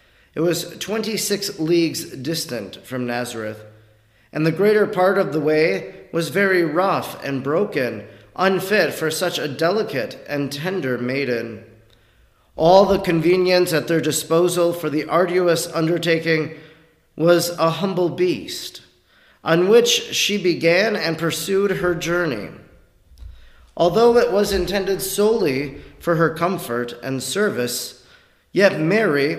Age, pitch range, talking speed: 40-59, 145-195 Hz, 125 wpm